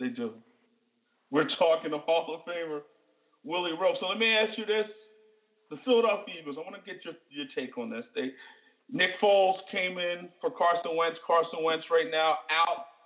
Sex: male